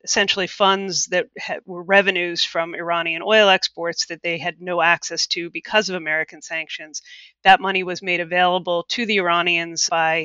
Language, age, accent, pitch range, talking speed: English, 30-49, American, 165-190 Hz, 165 wpm